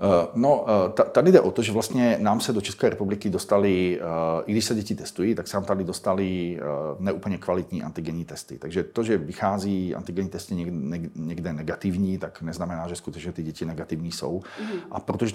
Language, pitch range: Czech, 90-105 Hz